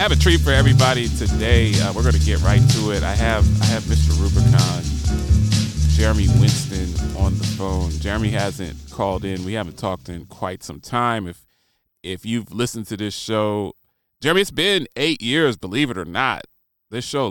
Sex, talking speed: male, 185 wpm